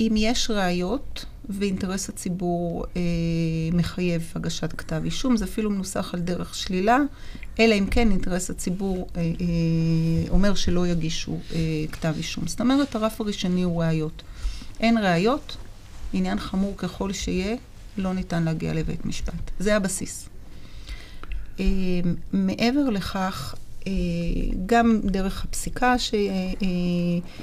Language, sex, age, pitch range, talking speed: Hebrew, female, 40-59, 170-210 Hz, 125 wpm